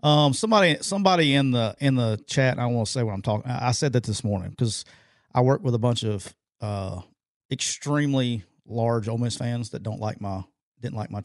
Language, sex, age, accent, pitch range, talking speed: English, male, 40-59, American, 115-145 Hz, 230 wpm